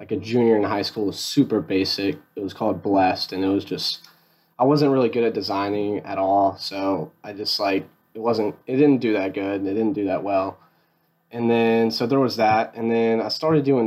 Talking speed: 230 wpm